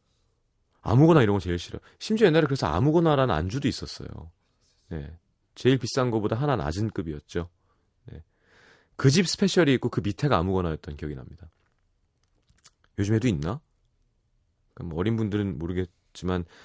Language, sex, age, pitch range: Korean, male, 30-49, 90-130 Hz